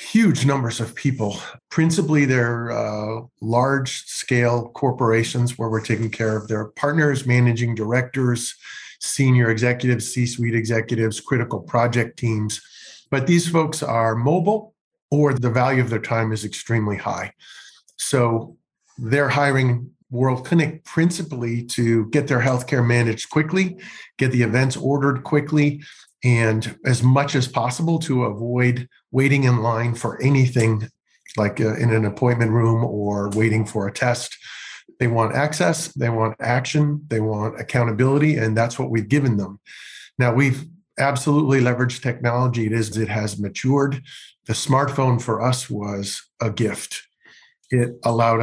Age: 50-69